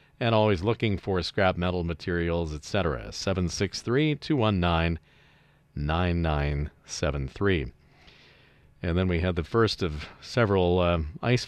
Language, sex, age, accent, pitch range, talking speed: English, male, 40-59, American, 85-115 Hz, 100 wpm